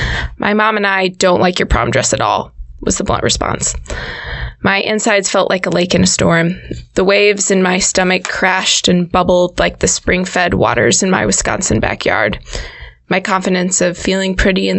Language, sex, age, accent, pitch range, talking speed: English, female, 20-39, American, 170-200 Hz, 185 wpm